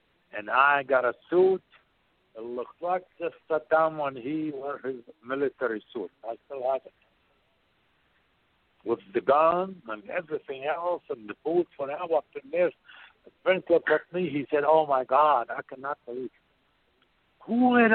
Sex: male